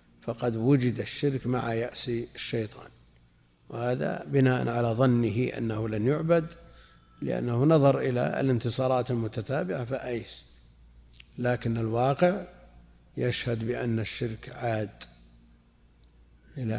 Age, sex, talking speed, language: 50-69, male, 95 wpm, Arabic